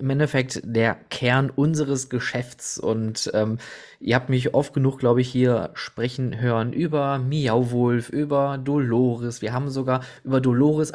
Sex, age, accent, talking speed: male, 20-39, German, 150 wpm